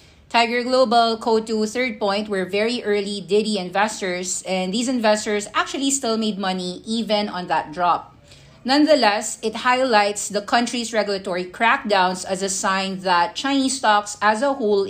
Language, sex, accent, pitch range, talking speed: English, female, Filipino, 195-235 Hz, 150 wpm